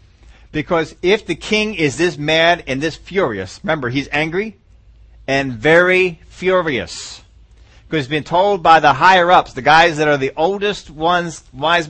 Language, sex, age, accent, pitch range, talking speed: English, male, 40-59, American, 125-185 Hz, 165 wpm